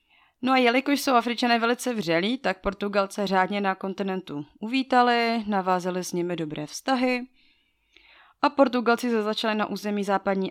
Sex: female